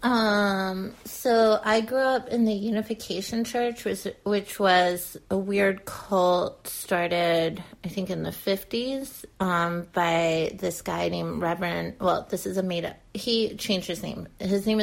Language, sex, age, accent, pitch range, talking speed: English, female, 30-49, American, 165-210 Hz, 160 wpm